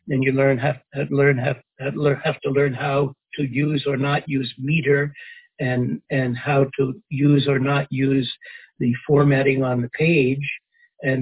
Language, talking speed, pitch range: English, 165 wpm, 135-150 Hz